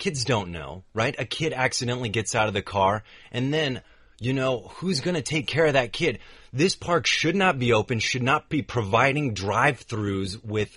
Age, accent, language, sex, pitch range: 30-49, American, Chinese, male, 100-145 Hz